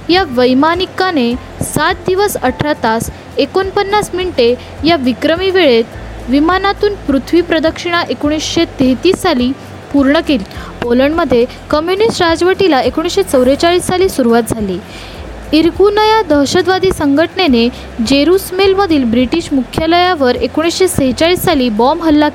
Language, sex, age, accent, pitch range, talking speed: Marathi, female, 20-39, native, 255-360 Hz, 80 wpm